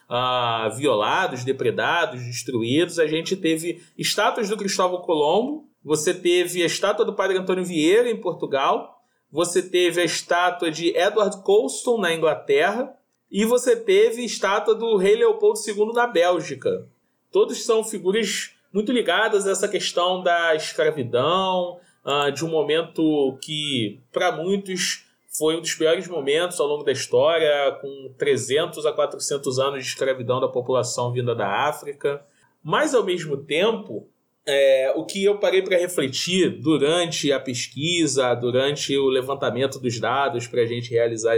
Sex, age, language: male, 20-39, Portuguese